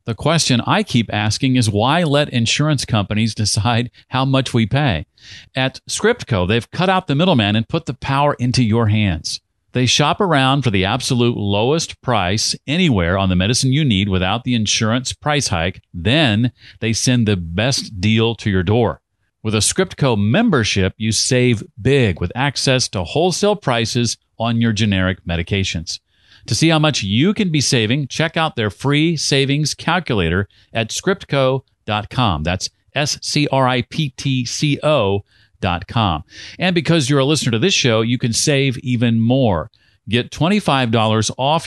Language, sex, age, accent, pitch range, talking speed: English, male, 40-59, American, 105-140 Hz, 155 wpm